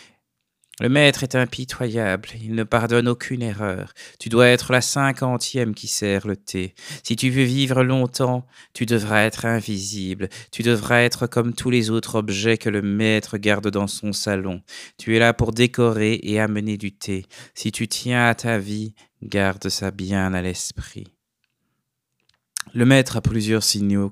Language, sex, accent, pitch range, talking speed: French, male, French, 100-120 Hz, 165 wpm